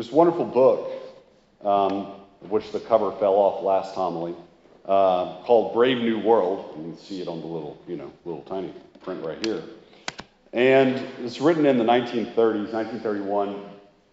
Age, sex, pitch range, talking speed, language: 40-59, male, 100-125 Hz, 155 wpm, English